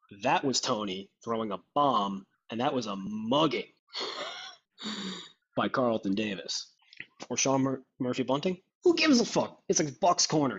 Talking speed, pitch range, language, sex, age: 145 wpm, 115-150 Hz, English, male, 20-39